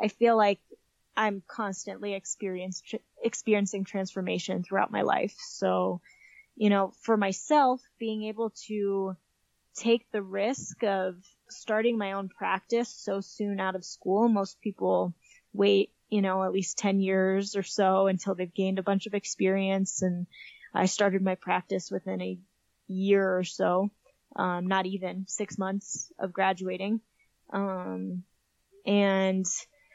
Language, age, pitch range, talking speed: English, 10-29, 190-220 Hz, 140 wpm